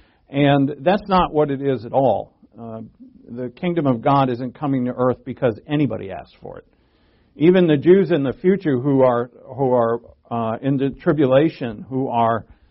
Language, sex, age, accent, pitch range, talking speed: English, male, 50-69, American, 120-160 Hz, 180 wpm